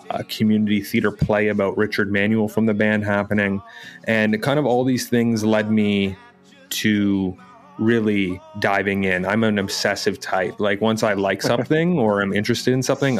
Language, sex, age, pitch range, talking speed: English, male, 30-49, 100-110 Hz, 170 wpm